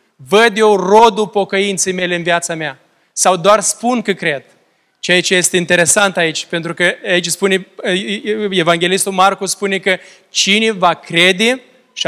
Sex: male